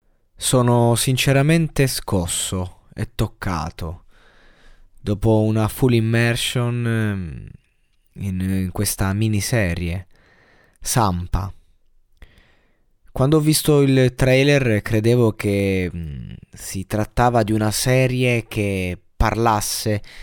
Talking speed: 80 wpm